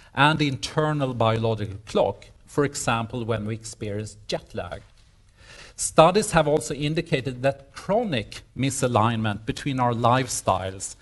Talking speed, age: 120 wpm, 40-59